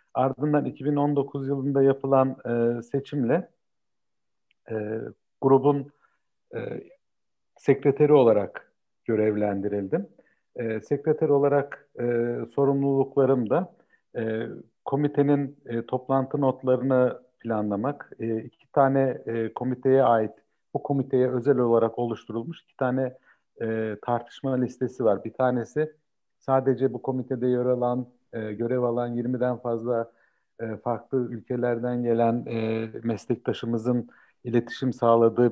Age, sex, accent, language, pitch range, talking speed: 50-69, male, native, Turkish, 115-135 Hz, 100 wpm